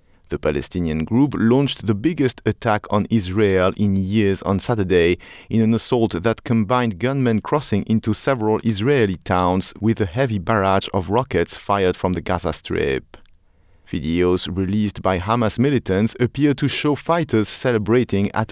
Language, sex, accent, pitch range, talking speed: English, male, French, 95-125 Hz, 150 wpm